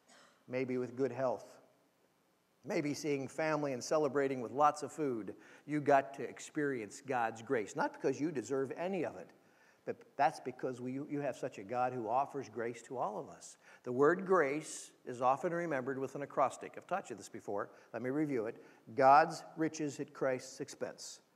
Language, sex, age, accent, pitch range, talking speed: English, male, 50-69, American, 135-170 Hz, 180 wpm